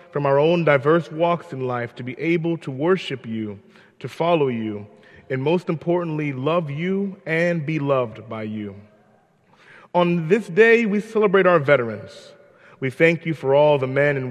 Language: English